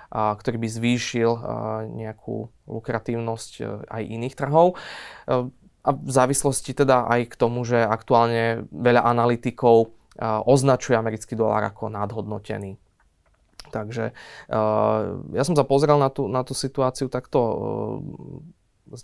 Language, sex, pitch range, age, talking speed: Slovak, male, 110-130 Hz, 20-39, 110 wpm